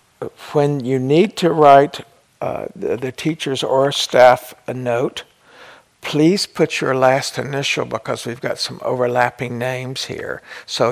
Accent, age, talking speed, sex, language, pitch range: American, 60-79, 145 wpm, male, English, 125-145 Hz